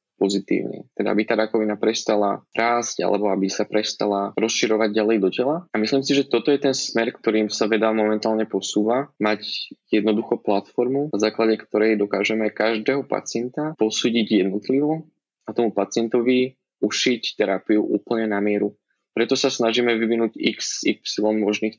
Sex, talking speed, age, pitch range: male, 145 wpm, 20-39, 105-120 Hz